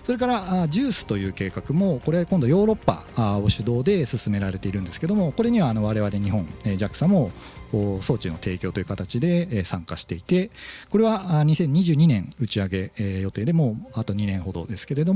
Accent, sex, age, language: native, male, 40-59, Japanese